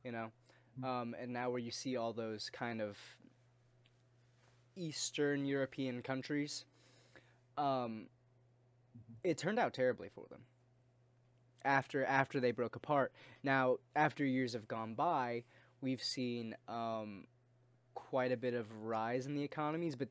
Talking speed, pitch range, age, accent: 135 wpm, 120-135 Hz, 20-39, American